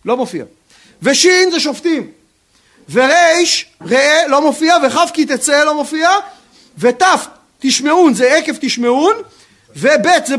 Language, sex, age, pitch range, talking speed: Hebrew, male, 40-59, 245-330 Hz, 120 wpm